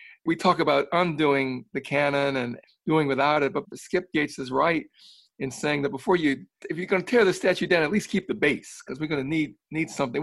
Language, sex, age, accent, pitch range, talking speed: English, male, 60-79, American, 135-175 Hz, 225 wpm